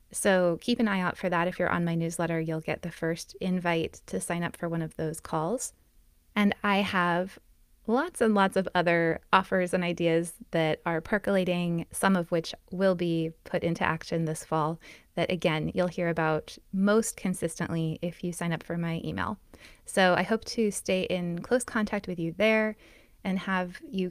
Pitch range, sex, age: 170-205 Hz, female, 20-39